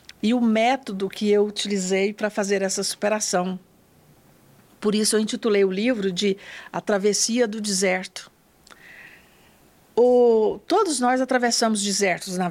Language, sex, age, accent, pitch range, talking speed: Portuguese, female, 50-69, Brazilian, 185-225 Hz, 130 wpm